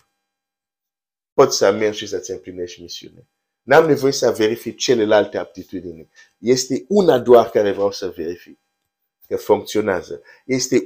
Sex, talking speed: male, 120 wpm